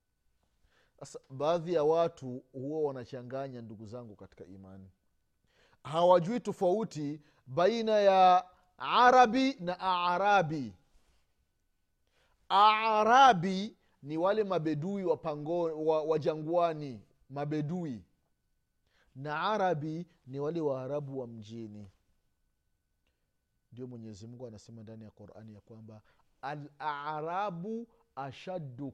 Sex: male